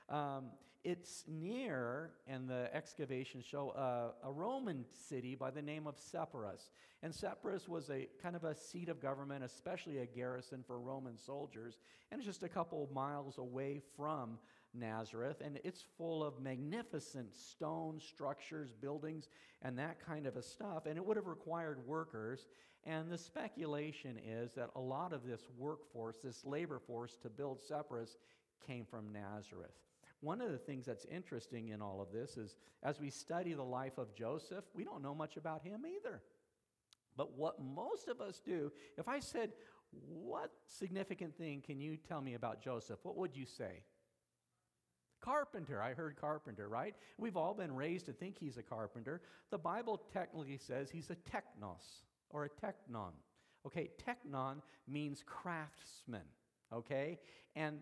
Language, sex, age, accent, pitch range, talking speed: English, male, 50-69, American, 130-165 Hz, 165 wpm